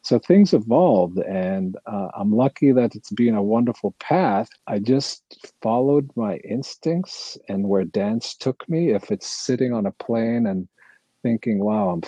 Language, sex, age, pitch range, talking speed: English, male, 50-69, 90-120 Hz, 165 wpm